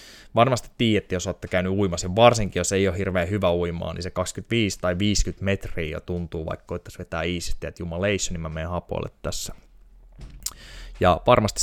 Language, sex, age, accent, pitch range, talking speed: Finnish, male, 20-39, native, 85-100 Hz, 185 wpm